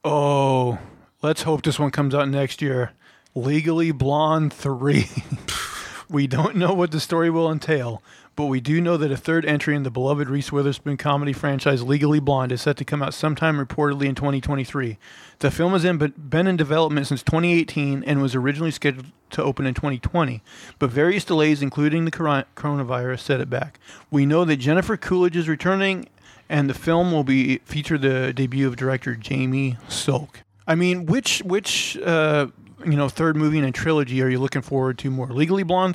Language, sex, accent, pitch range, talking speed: English, male, American, 135-165 Hz, 185 wpm